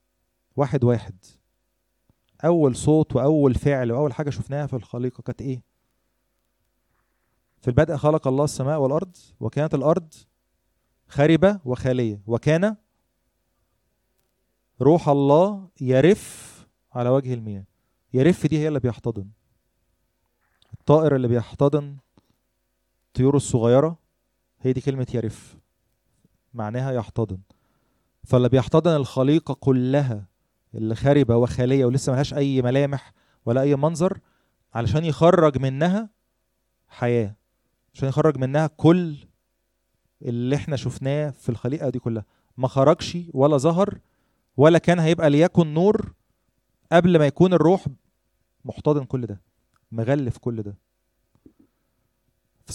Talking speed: 110 wpm